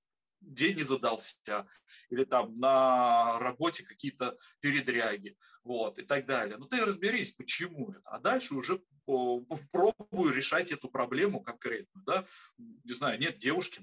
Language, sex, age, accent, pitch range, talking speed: Russian, male, 20-39, native, 125-195 Hz, 135 wpm